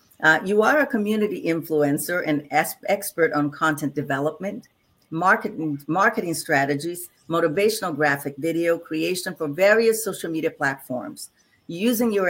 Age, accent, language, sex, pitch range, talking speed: 50-69, American, English, female, 145-190 Hz, 125 wpm